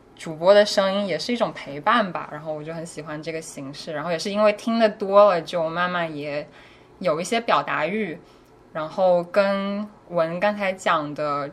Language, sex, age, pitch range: Chinese, female, 10-29, 155-185 Hz